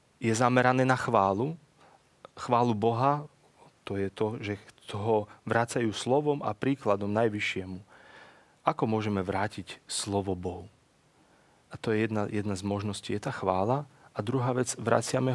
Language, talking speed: Slovak, 135 wpm